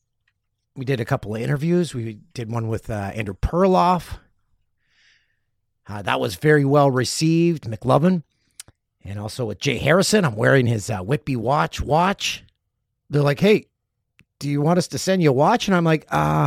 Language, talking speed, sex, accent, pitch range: English, 175 wpm, male, American, 105-140 Hz